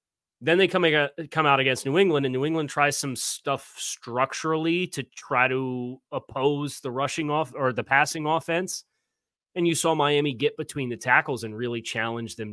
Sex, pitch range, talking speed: male, 115-140 Hz, 175 wpm